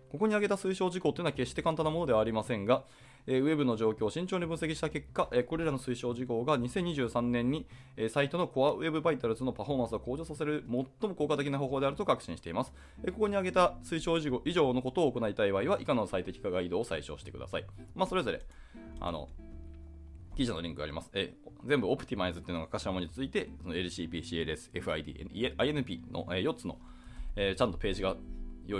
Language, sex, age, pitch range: Japanese, male, 20-39, 95-150 Hz